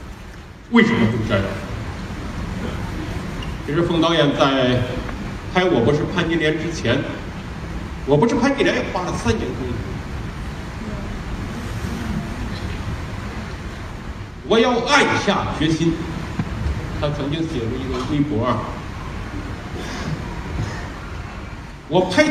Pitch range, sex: 100-150 Hz, male